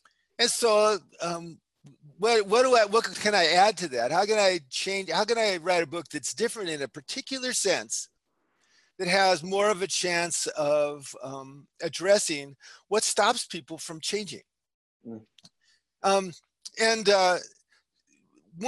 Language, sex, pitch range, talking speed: English, male, 145-210 Hz, 150 wpm